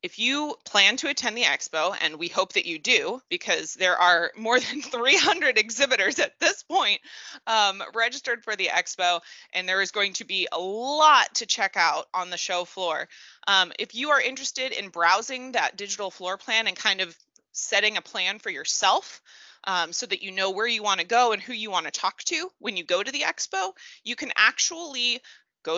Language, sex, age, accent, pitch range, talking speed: English, female, 20-39, American, 180-250 Hz, 205 wpm